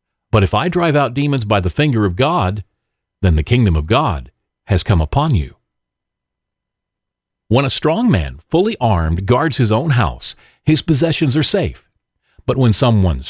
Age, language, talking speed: 50-69, English, 165 wpm